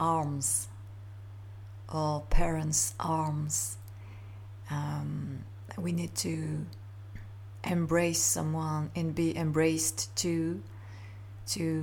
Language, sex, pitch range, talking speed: English, female, 100-165 Hz, 75 wpm